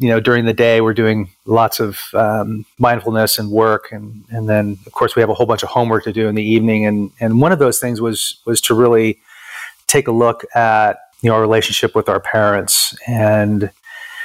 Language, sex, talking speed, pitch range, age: English, male, 220 wpm, 105-135 Hz, 30-49